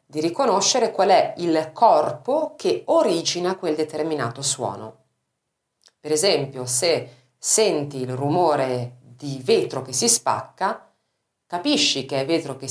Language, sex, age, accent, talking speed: Italian, female, 40-59, native, 130 wpm